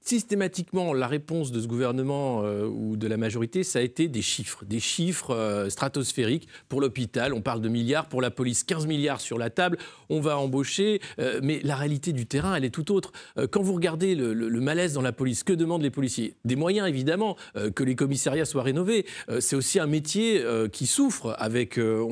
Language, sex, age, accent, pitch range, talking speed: French, male, 40-59, French, 130-180 Hz, 220 wpm